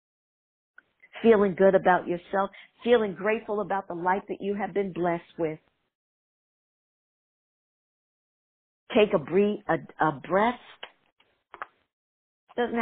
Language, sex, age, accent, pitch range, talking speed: English, female, 50-69, American, 170-220 Hz, 90 wpm